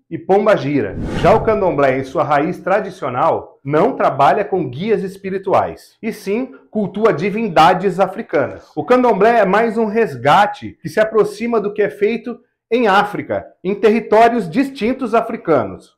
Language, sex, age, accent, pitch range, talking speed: English, male, 40-59, Brazilian, 170-225 Hz, 145 wpm